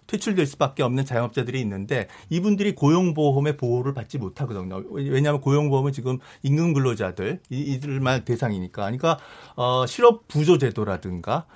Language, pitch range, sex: Korean, 125-165 Hz, male